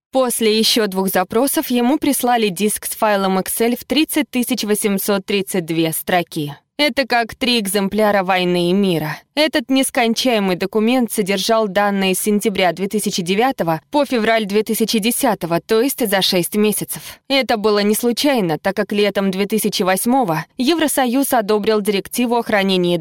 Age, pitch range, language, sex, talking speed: 20-39, 190-245 Hz, Russian, female, 130 wpm